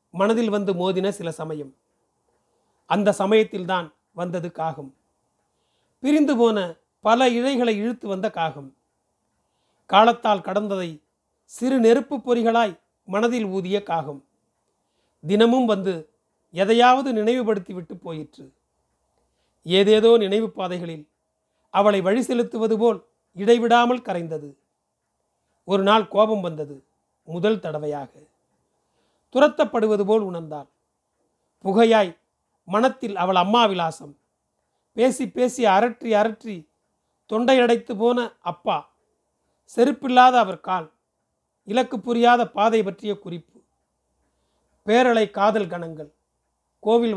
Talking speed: 85 wpm